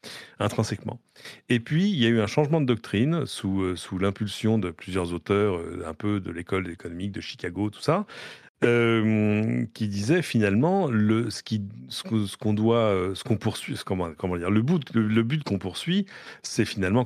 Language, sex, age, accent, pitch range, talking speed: French, male, 40-59, French, 95-120 Hz, 195 wpm